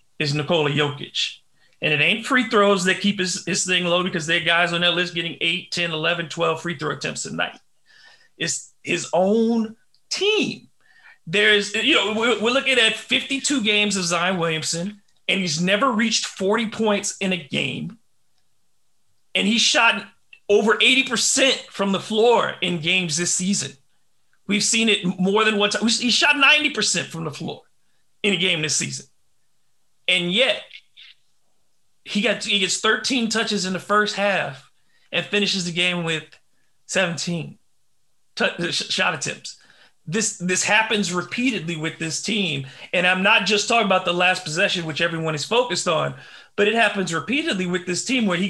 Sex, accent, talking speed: male, American, 170 wpm